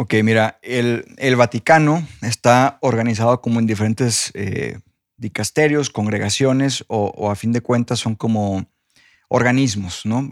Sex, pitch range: male, 110-135 Hz